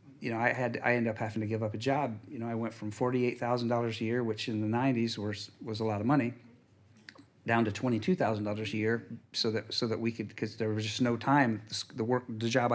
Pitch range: 110-140 Hz